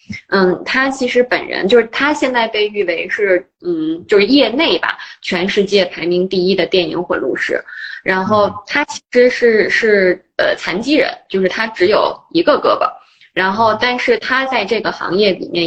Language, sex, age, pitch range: Chinese, female, 20-39, 180-255 Hz